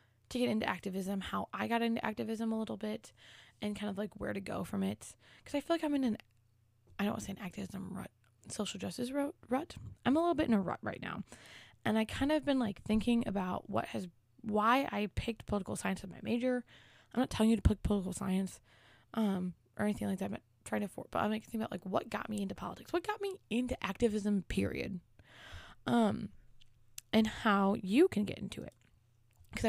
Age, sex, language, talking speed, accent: 20-39, female, English, 220 wpm, American